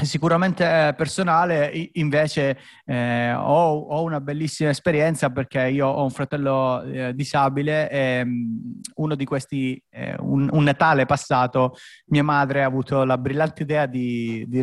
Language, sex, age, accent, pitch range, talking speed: Italian, male, 30-49, native, 130-150 Hz, 140 wpm